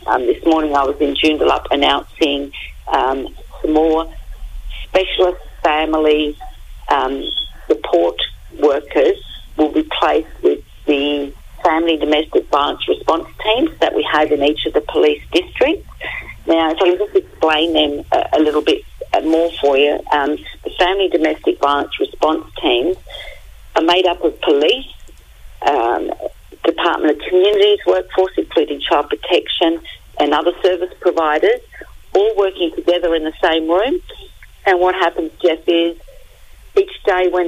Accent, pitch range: British, 150-185 Hz